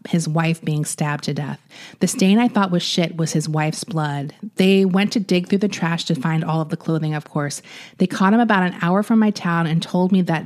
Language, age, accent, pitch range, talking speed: English, 30-49, American, 155-185 Hz, 250 wpm